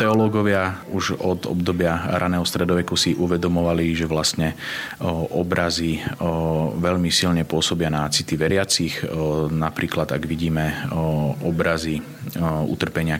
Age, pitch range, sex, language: 30-49, 80-90 Hz, male, Slovak